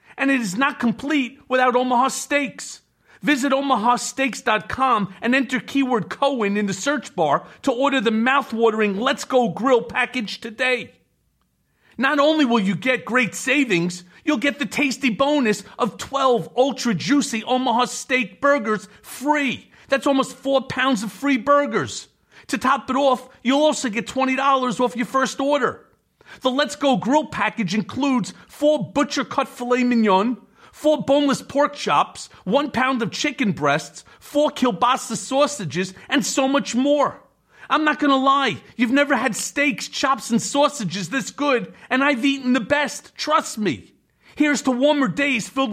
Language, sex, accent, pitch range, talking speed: English, male, American, 235-280 Hz, 155 wpm